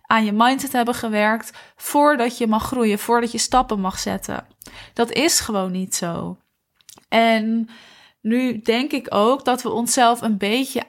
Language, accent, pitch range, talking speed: Dutch, Dutch, 205-240 Hz, 160 wpm